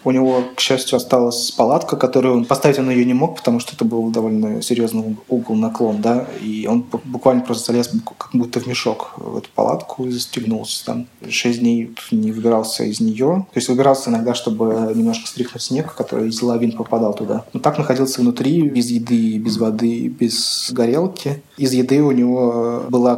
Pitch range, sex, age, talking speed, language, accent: 115-130 Hz, male, 20-39, 185 wpm, Russian, native